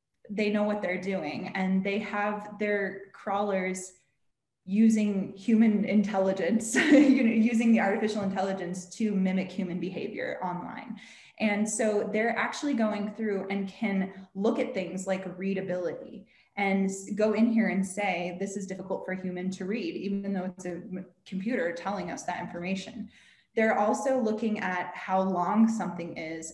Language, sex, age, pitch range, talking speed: English, female, 20-39, 190-220 Hz, 155 wpm